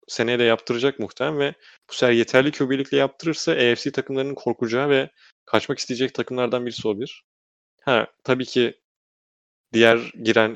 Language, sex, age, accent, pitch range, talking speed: Turkish, male, 30-49, native, 105-125 Hz, 135 wpm